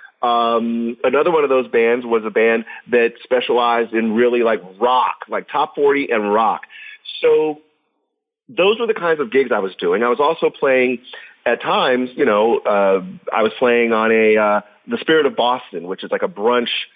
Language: English